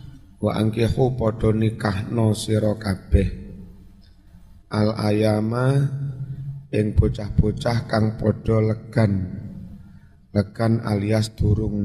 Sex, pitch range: male, 100-115 Hz